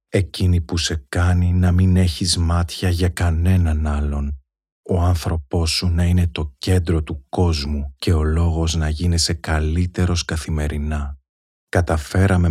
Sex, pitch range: male, 75-85 Hz